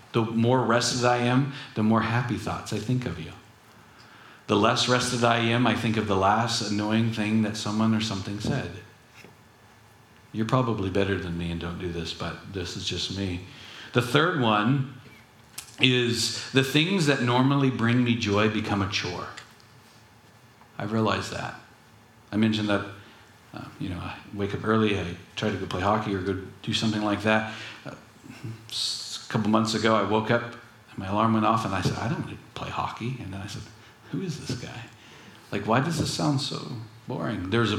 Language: English